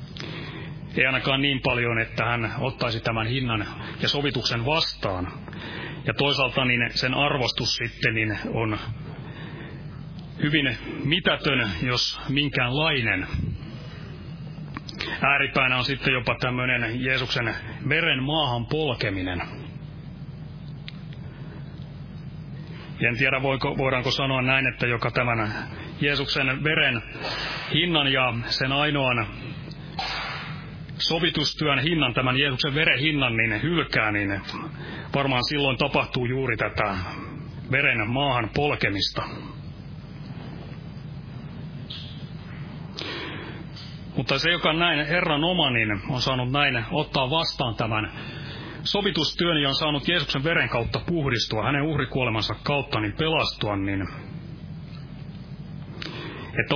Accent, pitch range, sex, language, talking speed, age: native, 125-155 Hz, male, Finnish, 95 wpm, 30-49